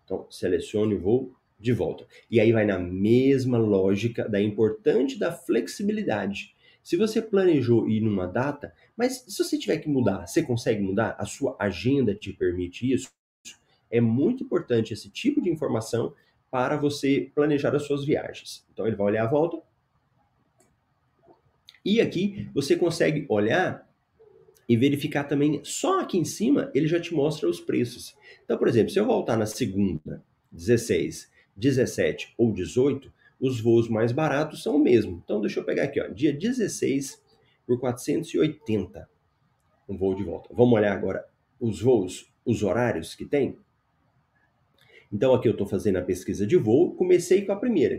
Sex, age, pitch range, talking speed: male, 30-49, 110-155 Hz, 160 wpm